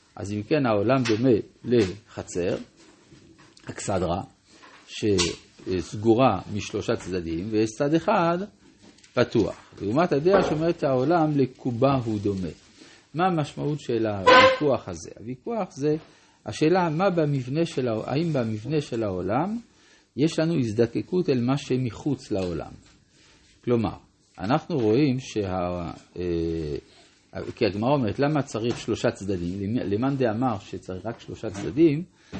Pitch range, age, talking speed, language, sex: 105-150 Hz, 50-69, 110 wpm, Hebrew, male